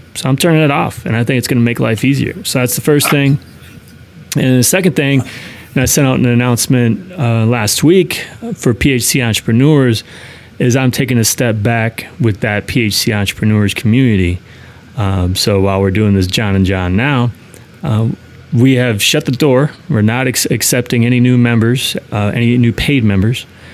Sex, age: male, 30-49